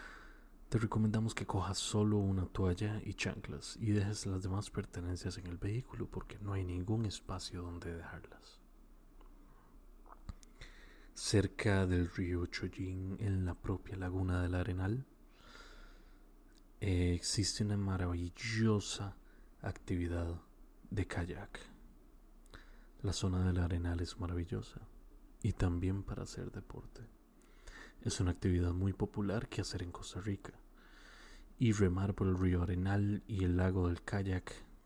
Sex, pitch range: male, 90-100 Hz